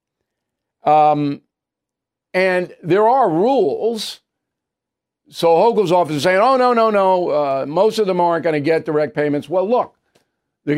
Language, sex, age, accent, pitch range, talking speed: English, male, 50-69, American, 155-240 Hz, 150 wpm